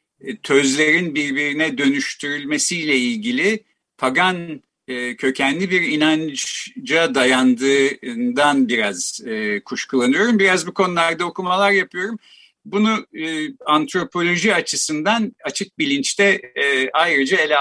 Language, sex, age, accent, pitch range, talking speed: Turkish, male, 50-69, native, 135-195 Hz, 80 wpm